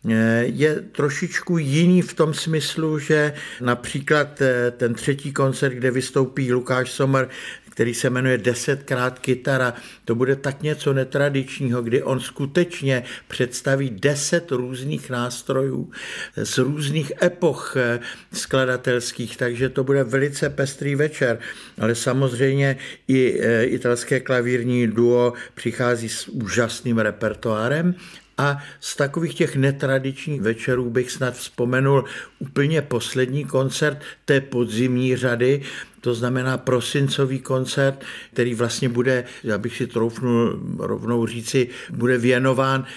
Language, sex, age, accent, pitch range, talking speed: Czech, male, 60-79, native, 125-140 Hz, 115 wpm